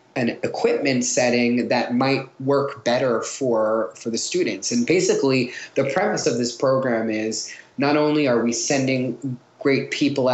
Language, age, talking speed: English, 20-39, 150 wpm